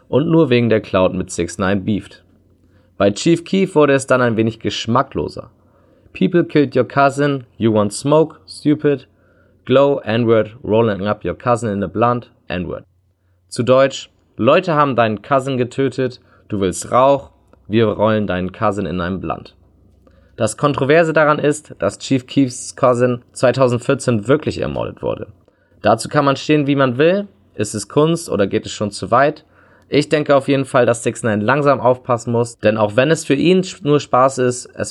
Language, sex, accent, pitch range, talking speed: German, male, German, 105-140 Hz, 175 wpm